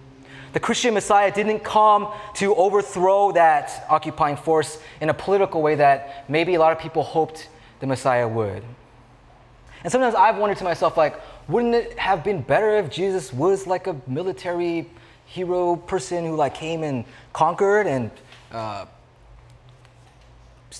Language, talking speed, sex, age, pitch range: English, 155 wpm, male, 20-39, 125-175 Hz